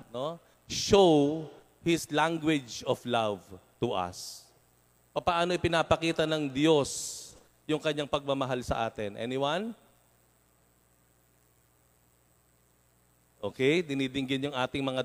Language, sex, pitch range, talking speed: Filipino, male, 110-180 Hz, 90 wpm